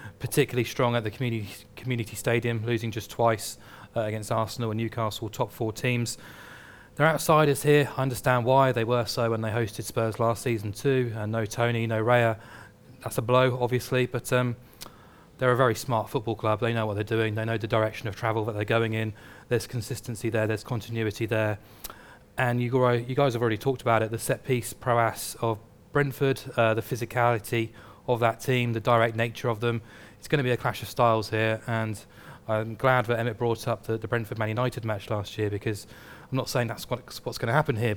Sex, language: male, English